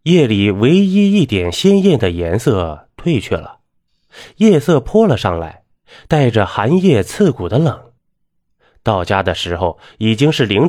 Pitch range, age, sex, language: 95-145 Hz, 20-39, male, Chinese